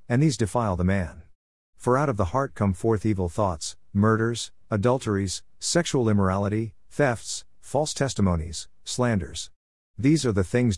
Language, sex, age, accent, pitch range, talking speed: English, male, 50-69, American, 90-115 Hz, 145 wpm